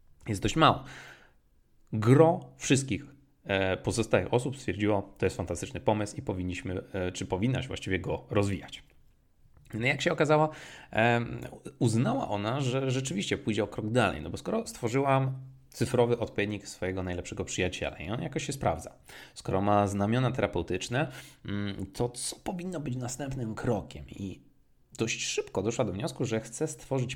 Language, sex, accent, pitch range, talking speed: Polish, male, native, 95-130 Hz, 145 wpm